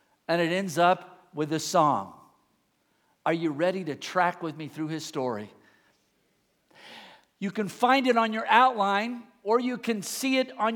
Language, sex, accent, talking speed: English, male, American, 165 wpm